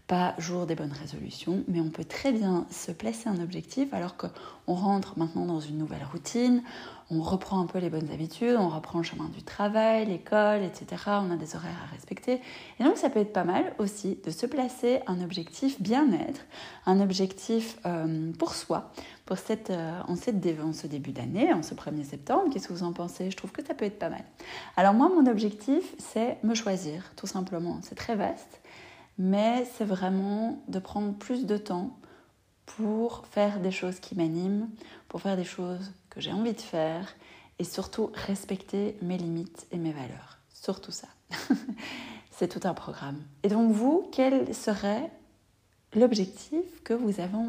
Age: 30-49